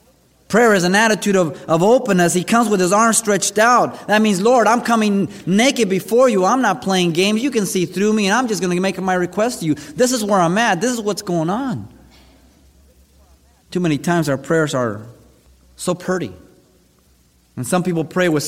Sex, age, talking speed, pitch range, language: male, 30-49, 210 wpm, 125-185 Hz, English